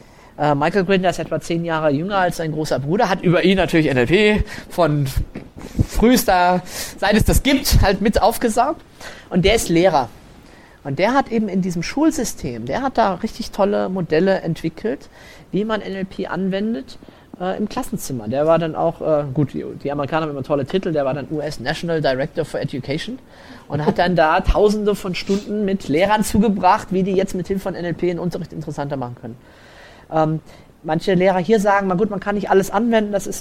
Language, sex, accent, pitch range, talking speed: German, male, German, 155-195 Hz, 190 wpm